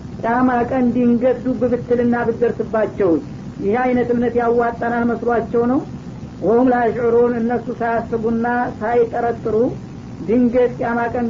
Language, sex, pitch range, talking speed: Amharic, female, 225-245 Hz, 95 wpm